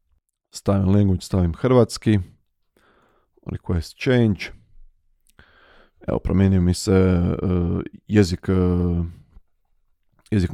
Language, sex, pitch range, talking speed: Croatian, male, 100-110 Hz, 70 wpm